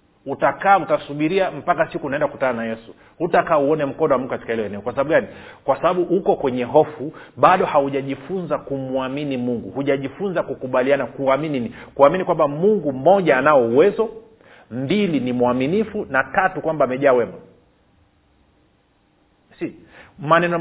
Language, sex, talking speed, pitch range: Swahili, male, 135 wpm, 135-190 Hz